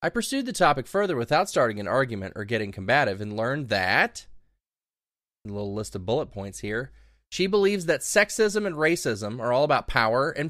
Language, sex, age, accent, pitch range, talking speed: English, male, 20-39, American, 110-145 Hz, 190 wpm